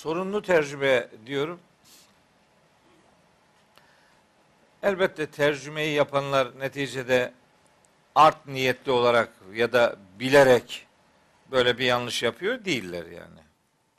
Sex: male